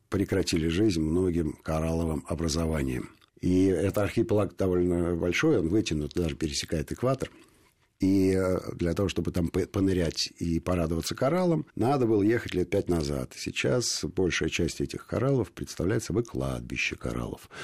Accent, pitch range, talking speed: native, 80-105 Hz, 135 wpm